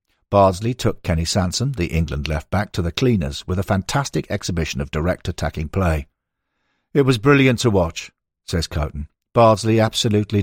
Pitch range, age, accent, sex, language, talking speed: 80-110 Hz, 50-69, British, male, English, 155 wpm